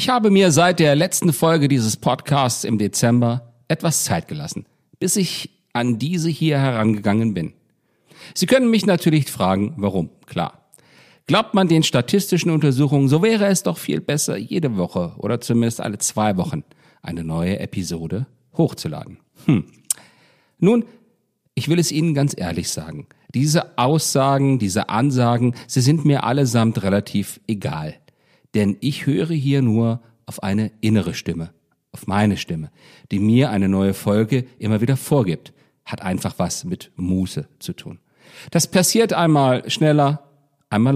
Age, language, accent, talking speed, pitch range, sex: 50-69, German, German, 150 wpm, 115-165 Hz, male